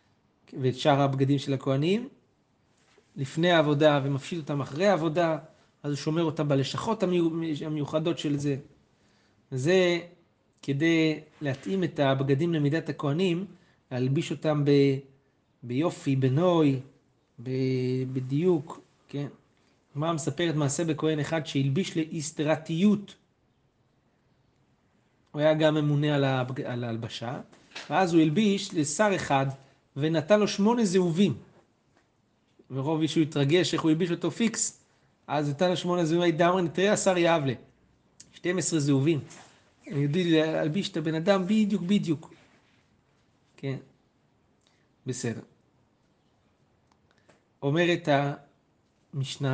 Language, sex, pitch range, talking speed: Hebrew, male, 135-175 Hz, 110 wpm